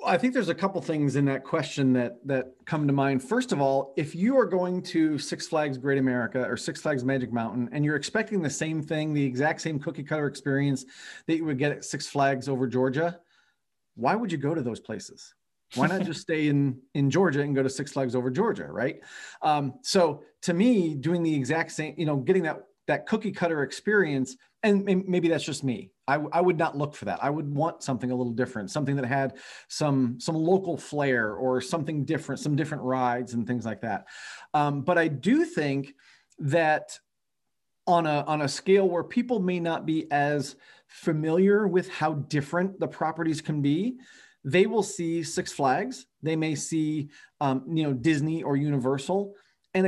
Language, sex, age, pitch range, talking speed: English, male, 40-59, 135-175 Hz, 200 wpm